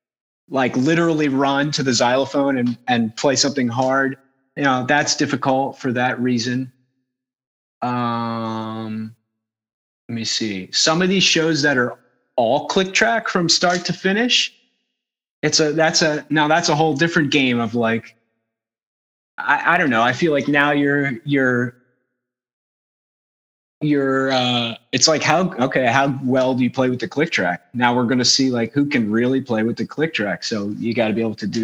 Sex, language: male, English